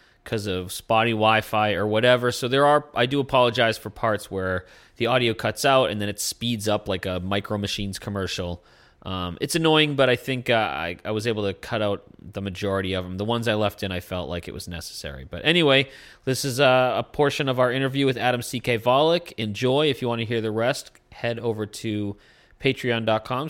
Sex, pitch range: male, 110-140 Hz